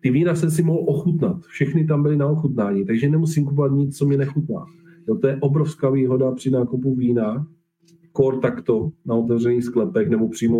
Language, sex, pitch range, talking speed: Czech, male, 115-170 Hz, 185 wpm